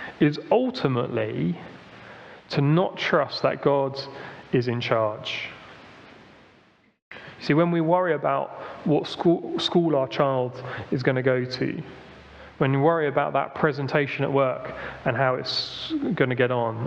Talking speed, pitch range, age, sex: 140 wpm, 130-170 Hz, 30-49, male